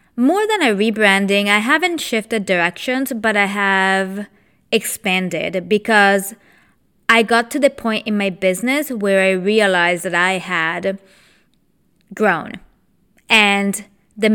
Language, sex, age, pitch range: English, female, 20-39, 190-250 Hz